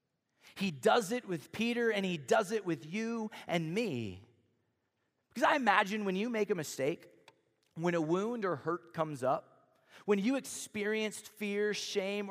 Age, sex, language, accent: 30-49, male, English, American